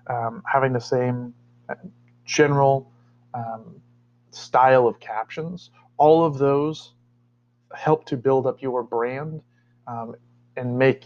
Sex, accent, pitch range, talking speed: male, American, 115-130 Hz, 115 wpm